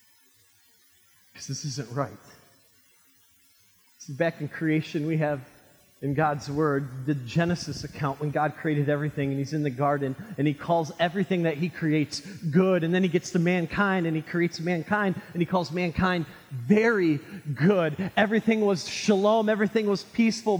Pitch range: 170-240 Hz